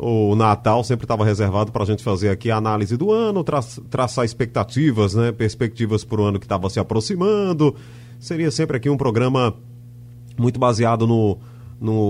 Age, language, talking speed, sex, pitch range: 30-49, Portuguese, 175 wpm, male, 110-140 Hz